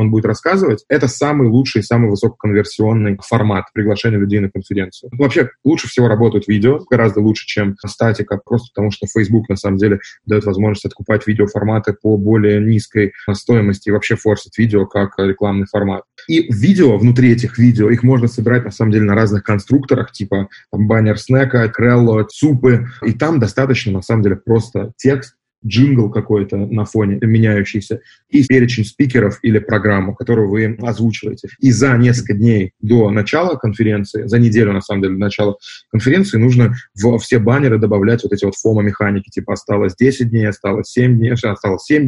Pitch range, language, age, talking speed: 105-120 Hz, Russian, 20-39, 165 wpm